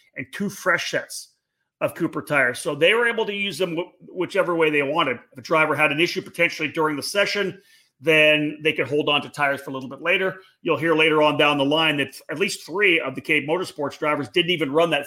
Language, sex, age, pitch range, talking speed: English, male, 40-59, 145-175 Hz, 245 wpm